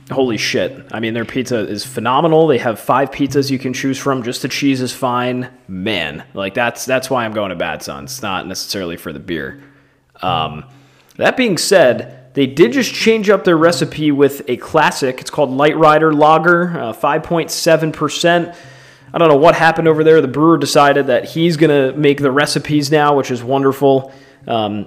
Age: 30-49